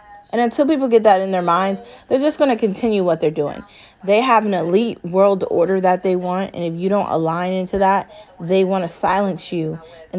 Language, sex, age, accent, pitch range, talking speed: English, female, 20-39, American, 175-215 Hz, 225 wpm